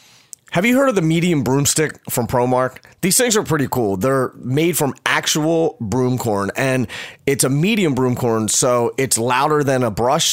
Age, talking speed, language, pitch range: 30-49, 175 wpm, English, 105-130 Hz